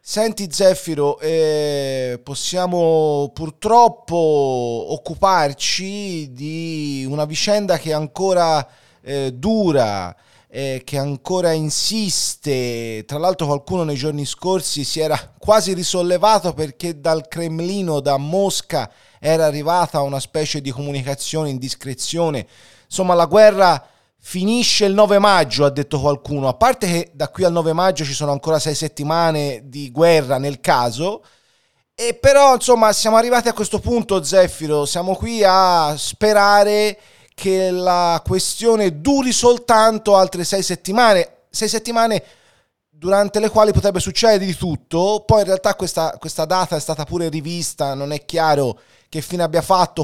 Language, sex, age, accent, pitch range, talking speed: Italian, male, 30-49, native, 145-195 Hz, 140 wpm